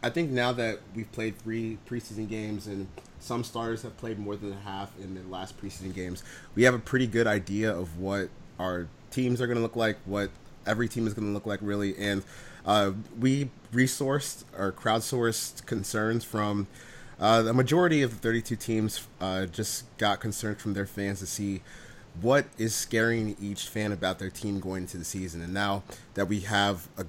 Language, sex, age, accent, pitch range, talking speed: English, male, 30-49, American, 95-115 Hz, 195 wpm